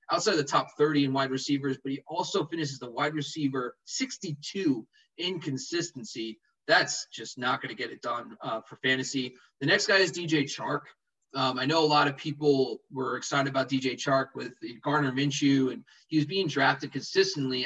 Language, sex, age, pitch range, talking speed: English, male, 20-39, 135-170 Hz, 190 wpm